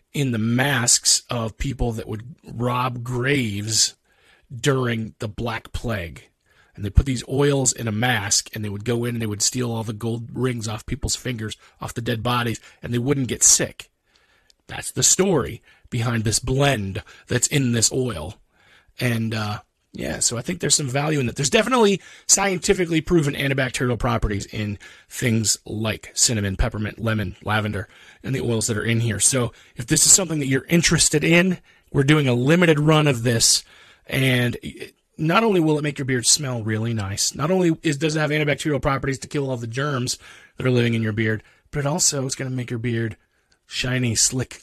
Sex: male